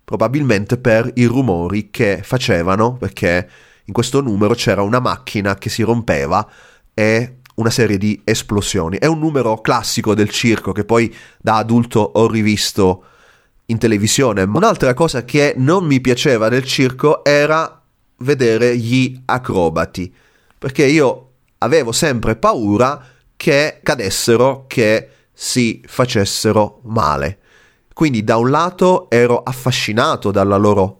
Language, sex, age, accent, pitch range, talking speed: Italian, male, 30-49, native, 100-125 Hz, 130 wpm